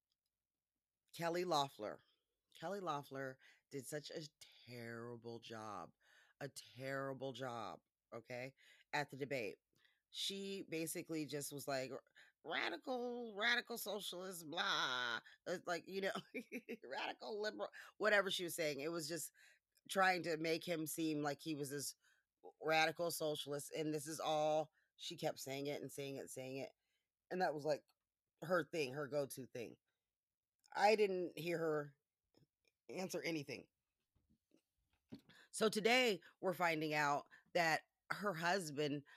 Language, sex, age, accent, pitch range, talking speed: English, female, 20-39, American, 135-170 Hz, 130 wpm